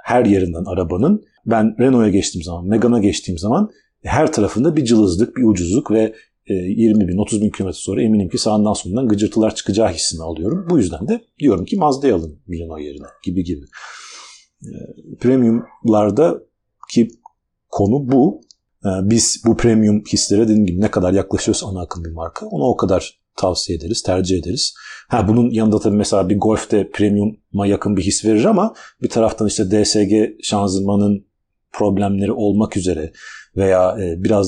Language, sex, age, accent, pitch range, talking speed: Turkish, male, 40-59, native, 95-110 Hz, 155 wpm